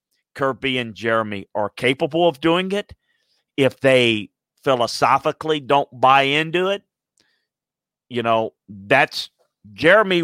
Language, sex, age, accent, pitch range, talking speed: English, male, 50-69, American, 115-145 Hz, 110 wpm